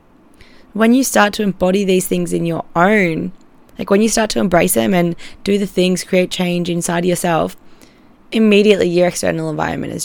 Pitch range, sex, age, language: 165-200 Hz, female, 20-39, English